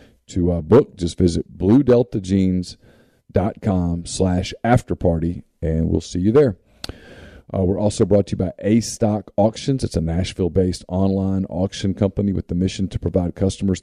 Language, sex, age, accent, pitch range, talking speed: English, male, 40-59, American, 90-110 Hz, 150 wpm